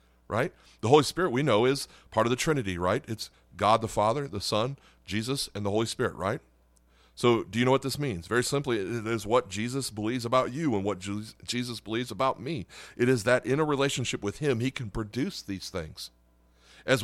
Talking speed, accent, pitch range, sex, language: 210 wpm, American, 95-130 Hz, male, English